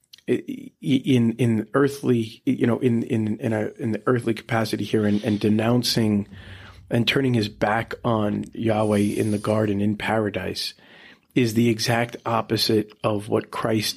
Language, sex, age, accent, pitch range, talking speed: English, male, 40-59, American, 105-120 Hz, 150 wpm